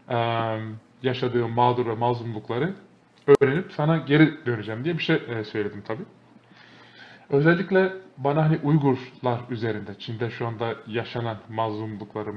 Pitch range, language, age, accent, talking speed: 115-150 Hz, Turkish, 20-39, native, 110 wpm